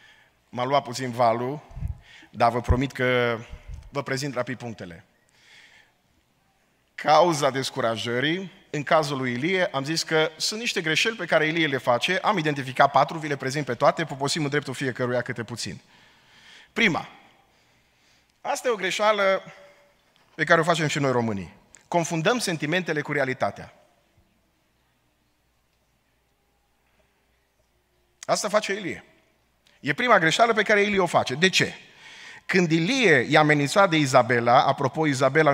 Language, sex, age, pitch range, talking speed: Romanian, male, 30-49, 130-165 Hz, 135 wpm